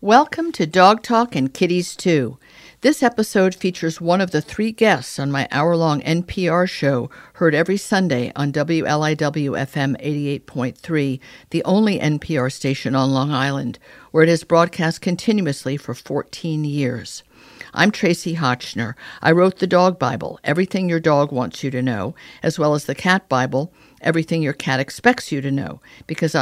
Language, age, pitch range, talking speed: English, 50-69, 140-175 Hz, 160 wpm